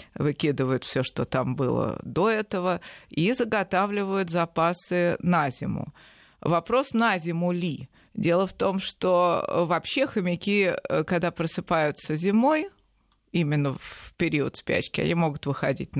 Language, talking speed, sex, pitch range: Russian, 120 wpm, female, 155-195 Hz